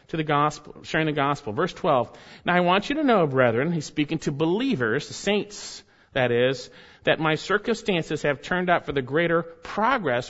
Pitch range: 155-220 Hz